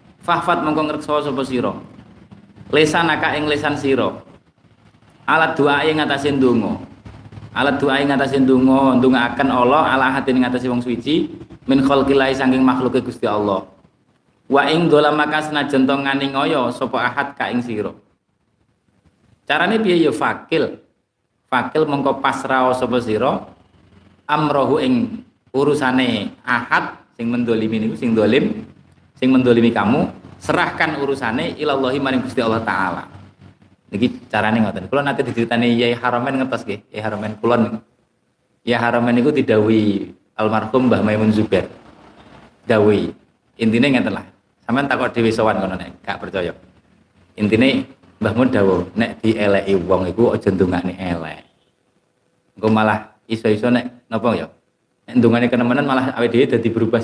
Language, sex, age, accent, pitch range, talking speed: Indonesian, male, 30-49, native, 110-140 Hz, 140 wpm